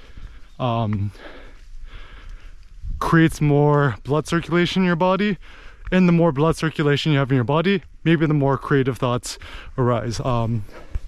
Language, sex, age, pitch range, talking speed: English, male, 20-39, 125-175 Hz, 135 wpm